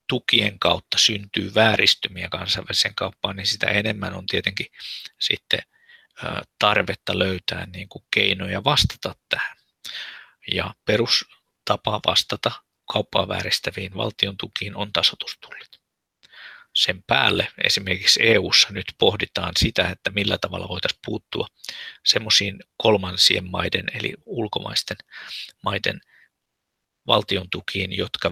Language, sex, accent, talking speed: Finnish, male, native, 105 wpm